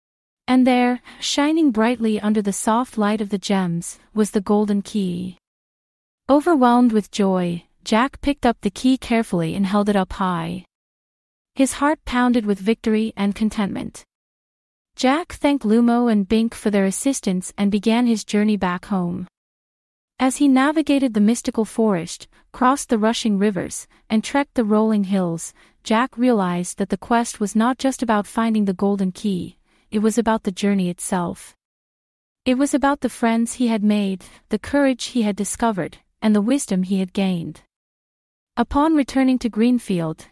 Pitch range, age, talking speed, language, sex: 200-245 Hz, 30-49, 160 wpm, English, female